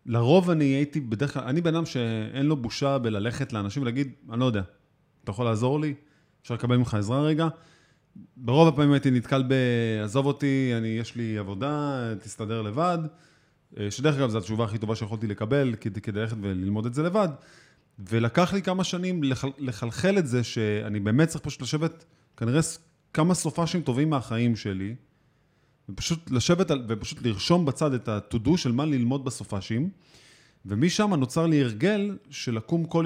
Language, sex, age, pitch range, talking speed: Hebrew, male, 30-49, 115-155 Hz, 165 wpm